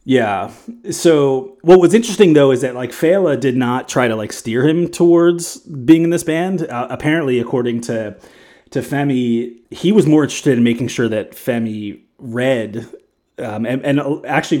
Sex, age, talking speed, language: male, 30-49, 175 wpm, English